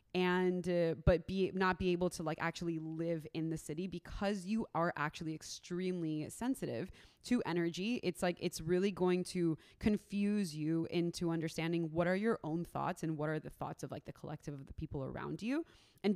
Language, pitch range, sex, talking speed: English, 165-190 Hz, female, 195 wpm